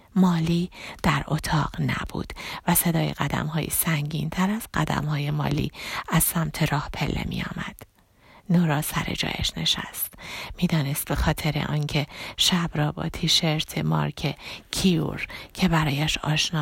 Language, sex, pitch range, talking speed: Persian, female, 155-170 Hz, 135 wpm